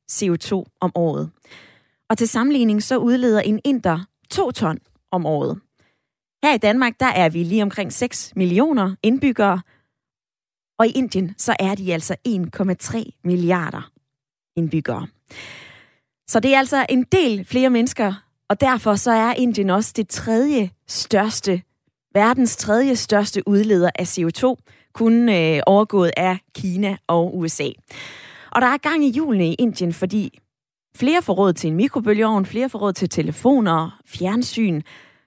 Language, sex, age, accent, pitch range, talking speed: Danish, female, 20-39, native, 175-230 Hz, 145 wpm